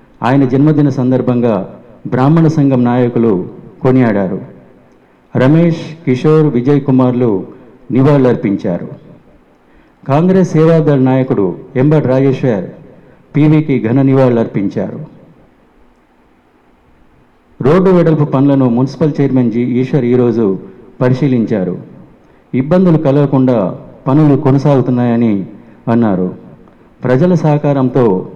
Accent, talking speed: native, 75 wpm